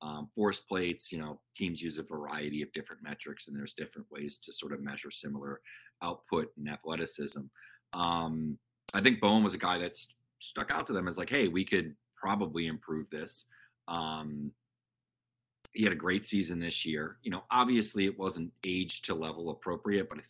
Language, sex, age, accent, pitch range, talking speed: English, male, 30-49, American, 75-105 Hz, 185 wpm